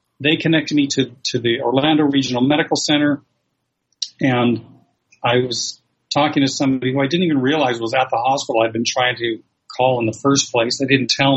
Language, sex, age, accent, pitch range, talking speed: English, male, 40-59, American, 125-150 Hz, 195 wpm